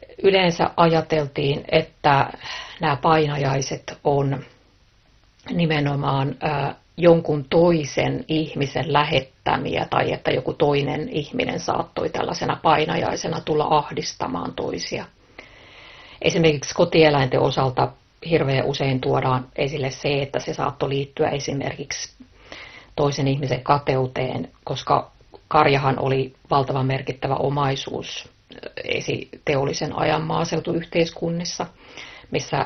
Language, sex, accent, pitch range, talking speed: Finnish, female, native, 130-155 Hz, 90 wpm